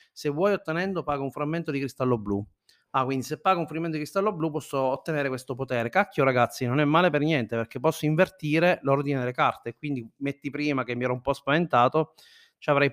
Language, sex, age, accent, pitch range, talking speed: Italian, male, 30-49, native, 130-160 Hz, 215 wpm